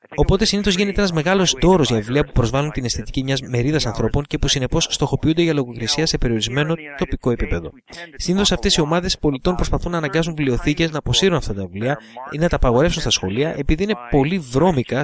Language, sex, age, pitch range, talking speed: English, male, 30-49, 120-170 Hz, 195 wpm